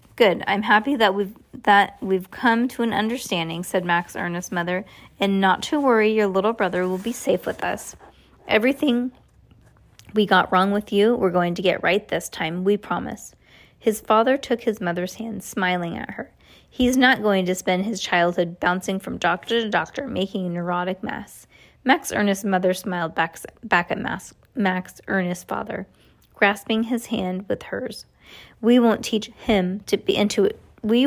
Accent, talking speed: American, 175 wpm